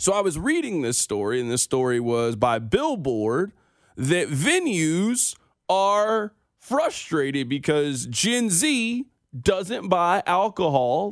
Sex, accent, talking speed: male, American, 120 wpm